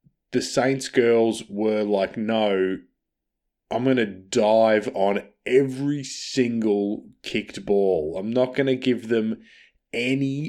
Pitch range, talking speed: 90-115 Hz, 125 wpm